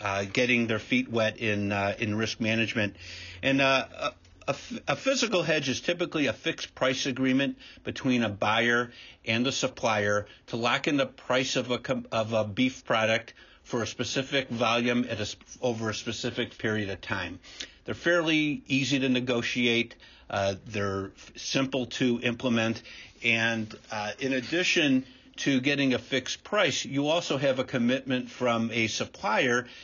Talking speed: 155 wpm